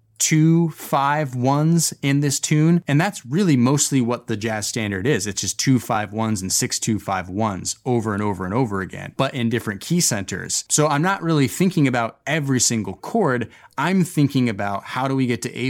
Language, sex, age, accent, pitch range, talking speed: English, male, 20-39, American, 110-145 Hz, 205 wpm